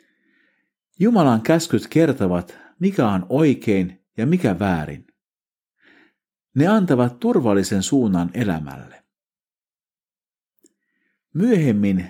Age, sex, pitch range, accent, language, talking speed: 50-69, male, 95-160 Hz, native, Finnish, 75 wpm